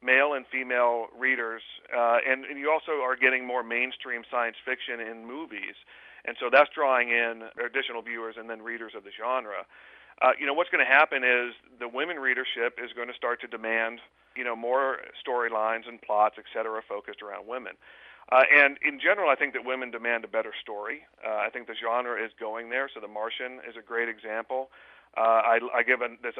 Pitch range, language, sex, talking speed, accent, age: 110-125 Hz, English, male, 205 wpm, American, 40-59